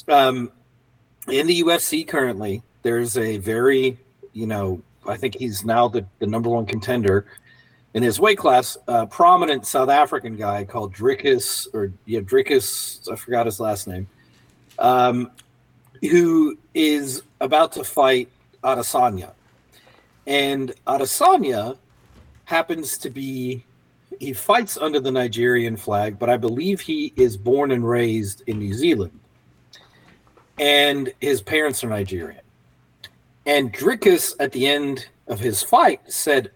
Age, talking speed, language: 40-59, 135 wpm, English